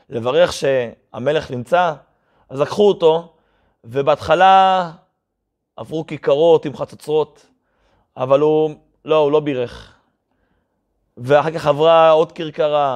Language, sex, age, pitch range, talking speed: Hebrew, male, 30-49, 145-200 Hz, 100 wpm